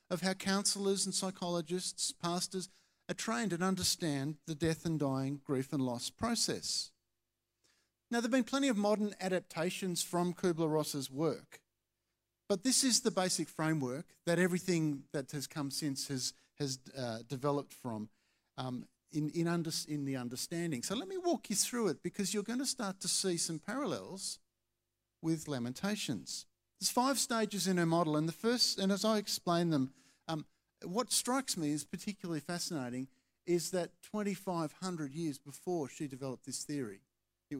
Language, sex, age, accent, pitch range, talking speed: English, male, 50-69, Australian, 135-205 Hz, 165 wpm